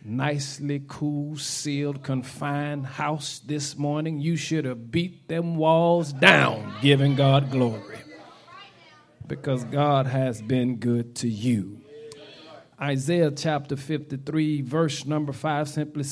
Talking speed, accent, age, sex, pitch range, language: 115 wpm, American, 40-59, male, 120-155 Hz, English